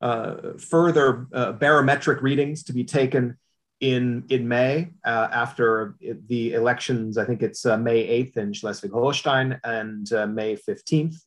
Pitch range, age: 115-140 Hz, 40-59